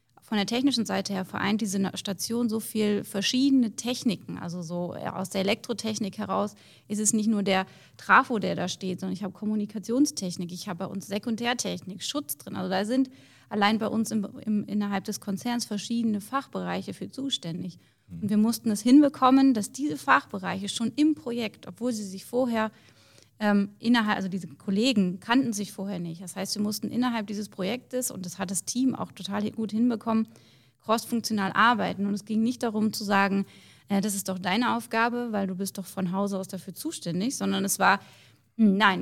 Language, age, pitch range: German, 30-49, 195-235 Hz